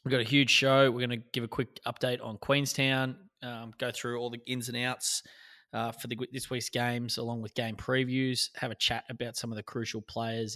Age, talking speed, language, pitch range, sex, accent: 20-39, 235 wpm, English, 110-130 Hz, male, Australian